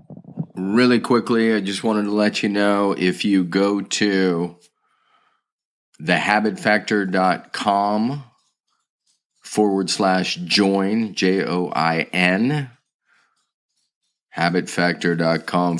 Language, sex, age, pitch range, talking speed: English, male, 30-49, 90-105 Hz, 70 wpm